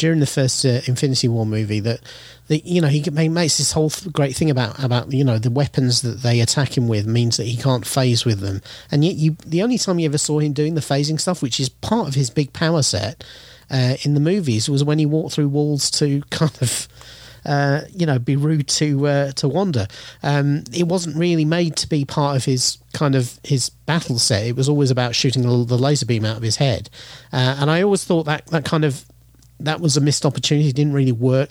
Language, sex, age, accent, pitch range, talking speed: English, male, 40-59, British, 120-150 Hz, 235 wpm